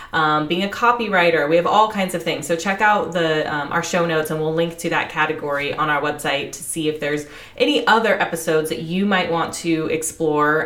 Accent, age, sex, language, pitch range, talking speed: American, 20-39, female, English, 160-195 Hz, 225 wpm